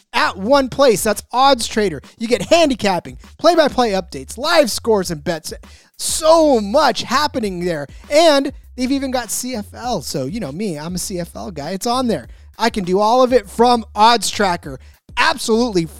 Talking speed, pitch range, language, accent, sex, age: 170 wpm, 185-255 Hz, English, American, male, 30-49